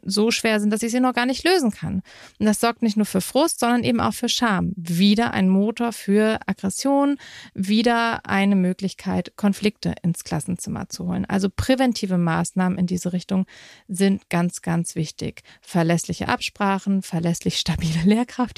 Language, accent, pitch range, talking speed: German, German, 175-215 Hz, 165 wpm